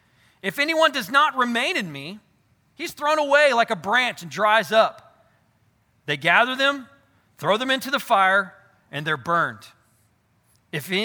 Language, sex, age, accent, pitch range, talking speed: English, male, 40-59, American, 170-255 Hz, 150 wpm